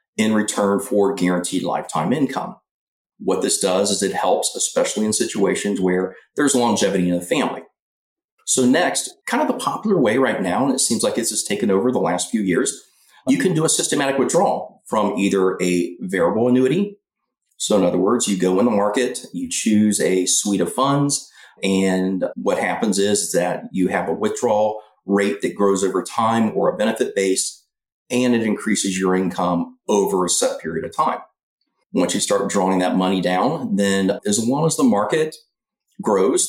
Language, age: English, 40-59